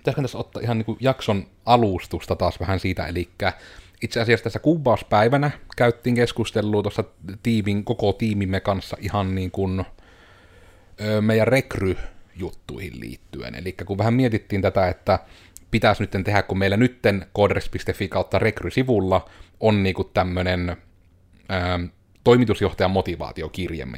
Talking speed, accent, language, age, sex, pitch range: 115 wpm, native, Finnish, 30-49, male, 90-115 Hz